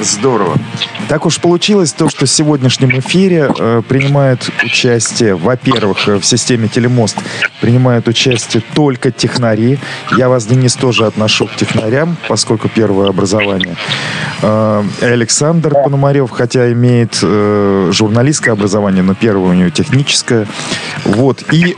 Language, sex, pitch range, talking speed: Russian, male, 110-145 Hz, 120 wpm